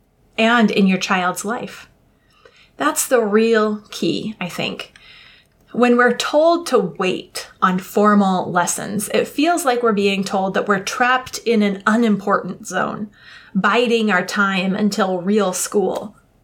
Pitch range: 195-235 Hz